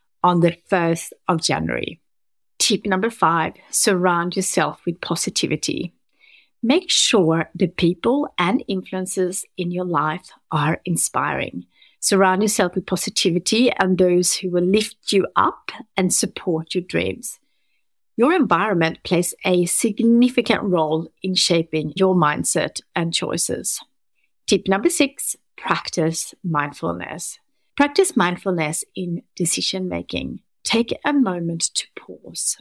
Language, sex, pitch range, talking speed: English, female, 175-220 Hz, 120 wpm